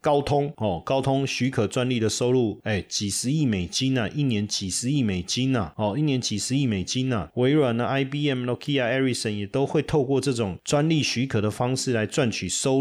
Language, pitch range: Chinese, 100-125 Hz